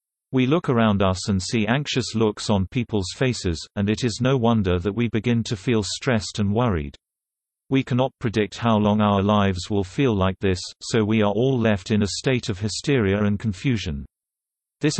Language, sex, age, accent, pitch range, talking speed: English, male, 40-59, British, 100-120 Hz, 190 wpm